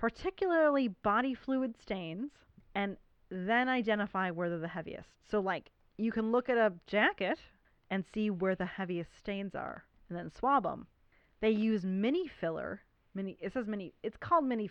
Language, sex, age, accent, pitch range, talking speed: English, female, 30-49, American, 185-235 Hz, 165 wpm